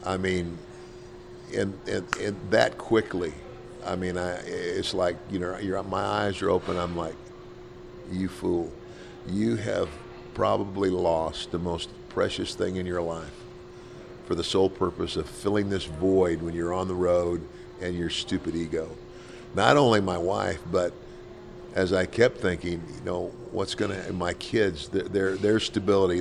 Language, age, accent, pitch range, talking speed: English, 50-69, American, 85-95 Hz, 165 wpm